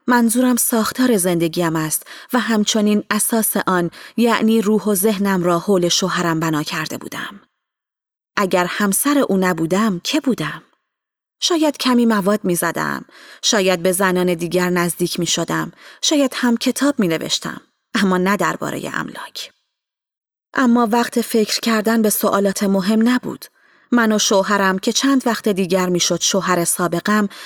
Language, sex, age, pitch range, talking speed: Persian, female, 30-49, 180-225 Hz, 140 wpm